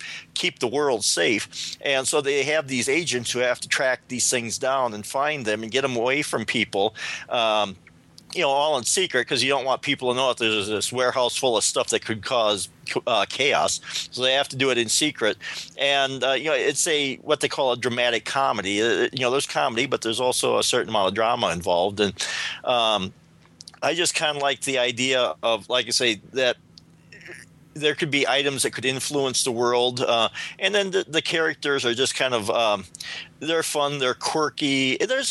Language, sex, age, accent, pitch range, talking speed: English, male, 40-59, American, 115-140 Hz, 210 wpm